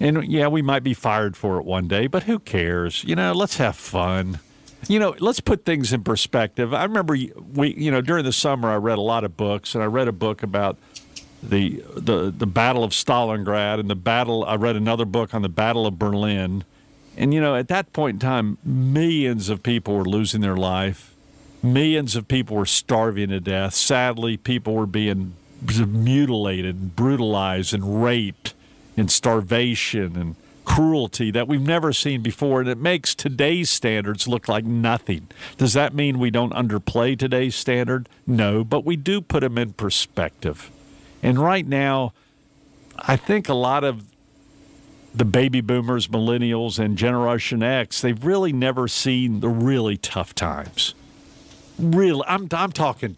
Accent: American